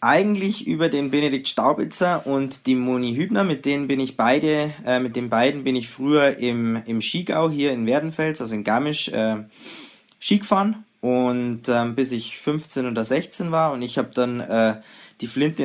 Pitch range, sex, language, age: 120-150 Hz, male, German, 20-39